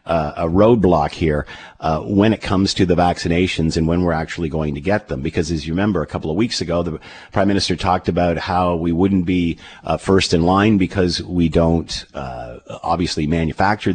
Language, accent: English, American